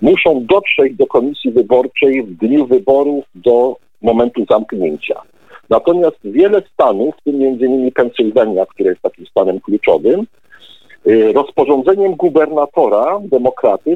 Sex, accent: male, native